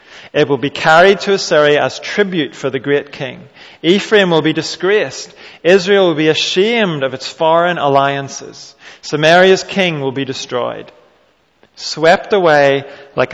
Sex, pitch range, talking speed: male, 140-175 Hz, 145 wpm